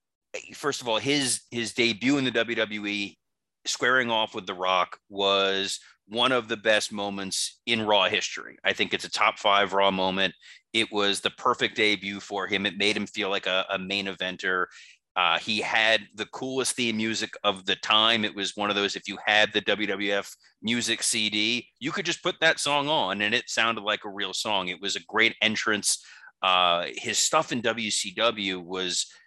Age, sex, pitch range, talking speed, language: 30-49, male, 100-115 Hz, 195 wpm, English